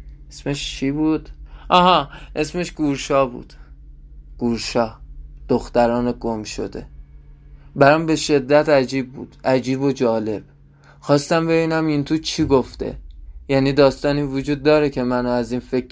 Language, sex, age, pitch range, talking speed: Persian, male, 20-39, 120-145 Hz, 135 wpm